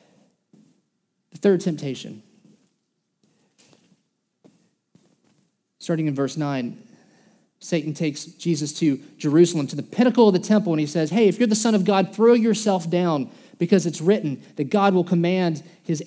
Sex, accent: male, American